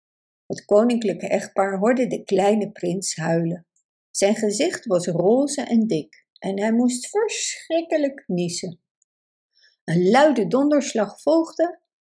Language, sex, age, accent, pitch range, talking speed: Dutch, female, 60-79, Dutch, 185-290 Hz, 115 wpm